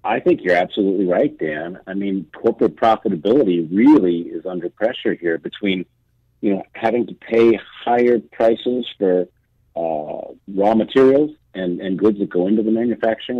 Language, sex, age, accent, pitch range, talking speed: English, male, 50-69, American, 95-125 Hz, 155 wpm